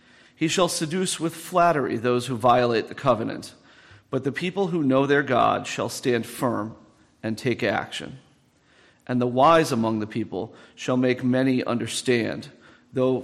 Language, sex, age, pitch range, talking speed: English, male, 40-59, 120-145 Hz, 155 wpm